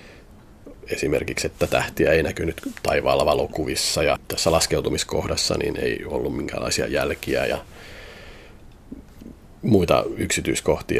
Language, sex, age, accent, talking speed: Finnish, male, 30-49, native, 100 wpm